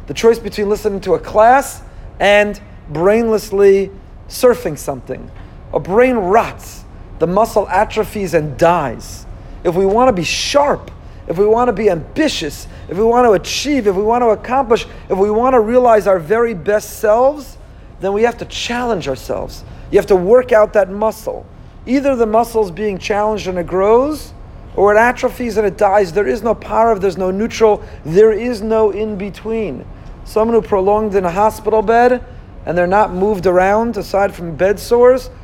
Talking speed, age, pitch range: 180 wpm, 40-59, 180-225 Hz